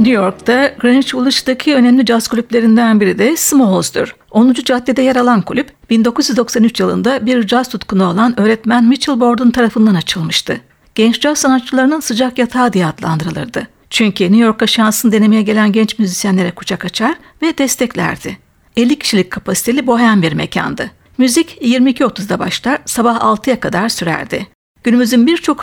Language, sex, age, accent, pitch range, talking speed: Turkish, female, 60-79, native, 215-260 Hz, 140 wpm